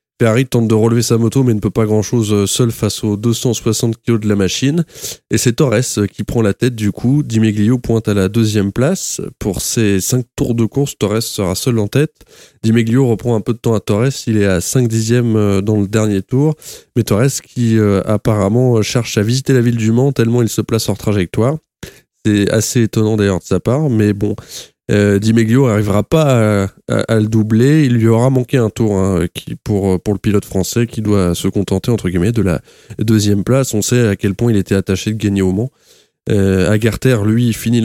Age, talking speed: 20-39, 225 wpm